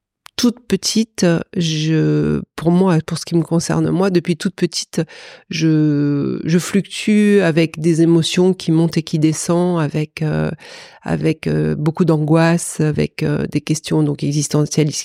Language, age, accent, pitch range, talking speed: French, 40-59, French, 150-175 Hz, 150 wpm